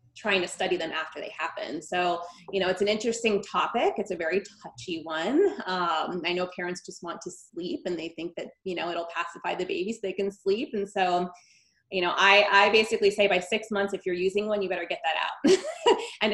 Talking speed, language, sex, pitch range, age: 230 wpm, English, female, 175-215 Hz, 20-39